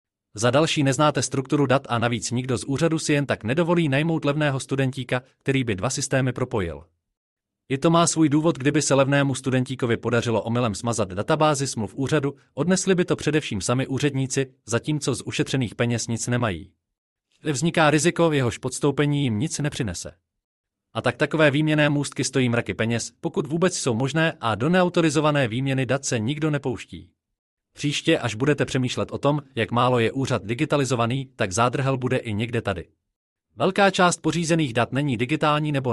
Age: 30-49